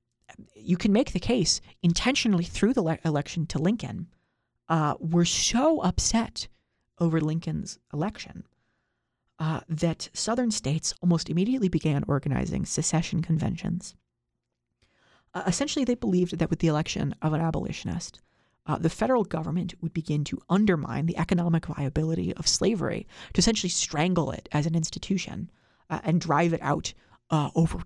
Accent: American